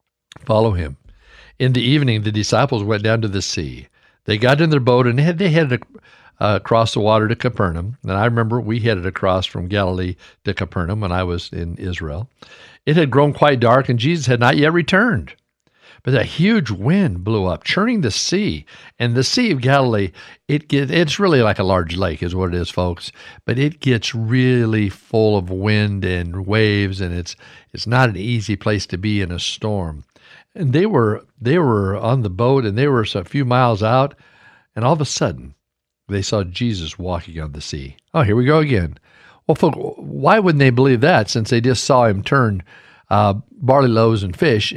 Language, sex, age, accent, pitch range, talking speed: English, male, 60-79, American, 95-135 Hz, 200 wpm